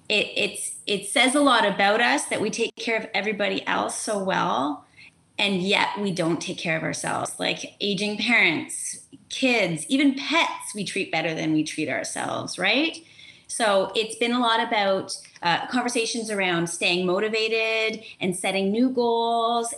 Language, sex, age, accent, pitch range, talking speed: English, female, 30-49, American, 180-245 Hz, 160 wpm